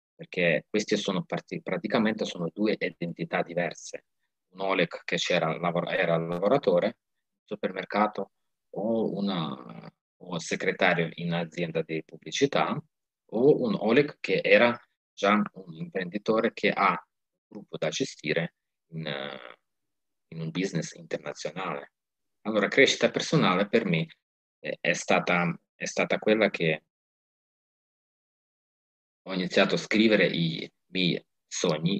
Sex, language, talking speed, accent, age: male, Italian, 115 wpm, native, 30-49